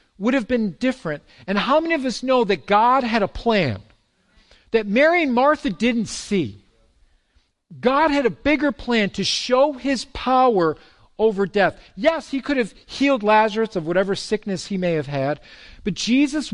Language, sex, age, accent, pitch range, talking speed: English, male, 50-69, American, 165-245 Hz, 170 wpm